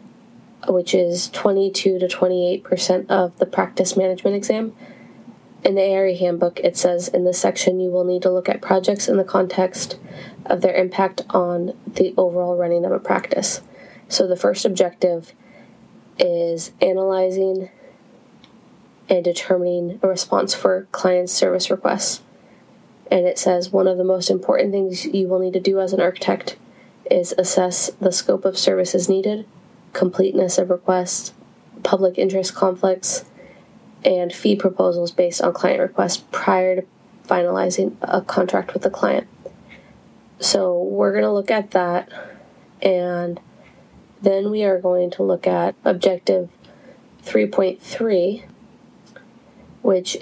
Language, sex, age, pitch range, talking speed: English, female, 20-39, 180-195 Hz, 140 wpm